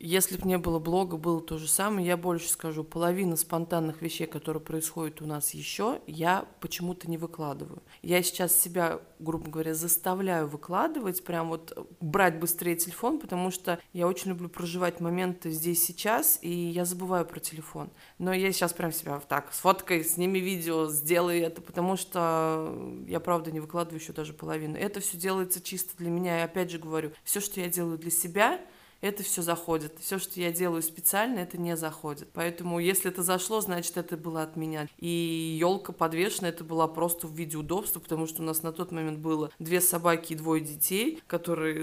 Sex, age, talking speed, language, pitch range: female, 20-39, 185 wpm, Russian, 160-180 Hz